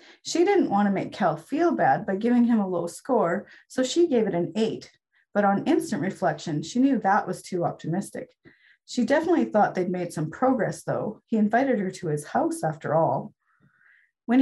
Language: English